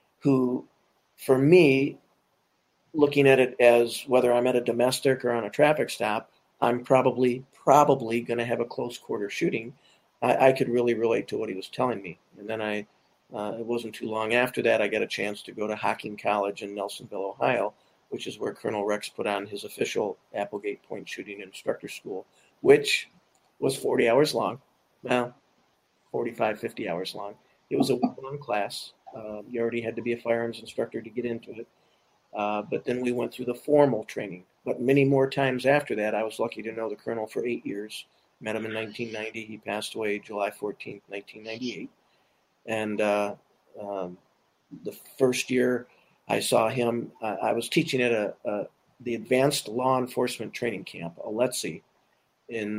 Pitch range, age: 110-130 Hz, 50-69